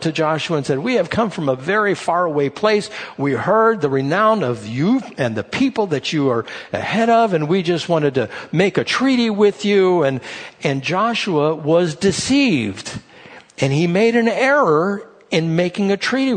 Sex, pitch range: male, 150-220 Hz